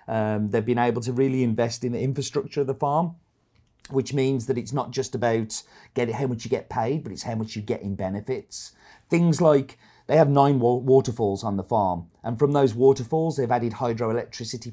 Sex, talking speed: male, 205 wpm